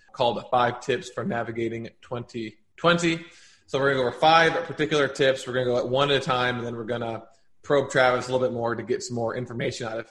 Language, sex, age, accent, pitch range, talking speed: English, male, 20-39, American, 120-140 Hz, 230 wpm